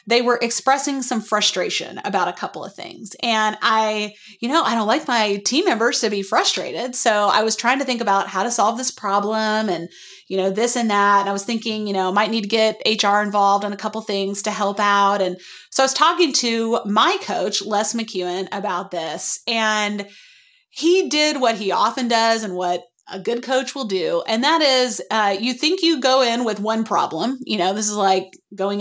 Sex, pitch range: female, 200-260 Hz